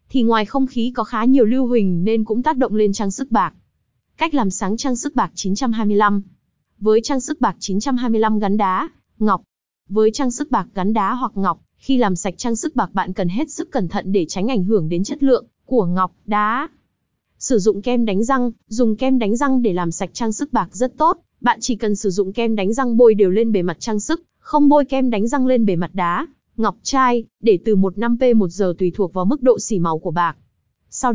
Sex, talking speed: female, 235 wpm